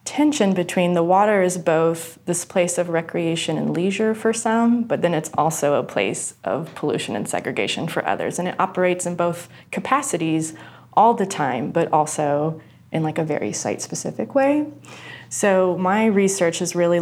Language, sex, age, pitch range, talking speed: English, female, 20-39, 160-180 Hz, 170 wpm